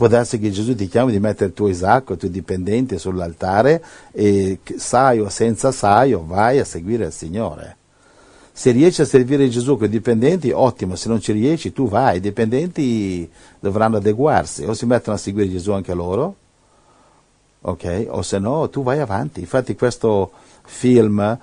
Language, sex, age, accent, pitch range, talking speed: Italian, male, 50-69, native, 95-115 Hz, 180 wpm